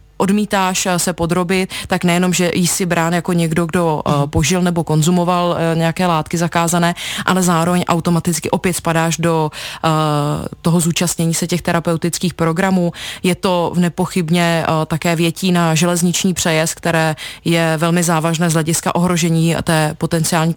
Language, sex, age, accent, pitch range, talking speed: Czech, female, 20-39, native, 160-175 Hz, 135 wpm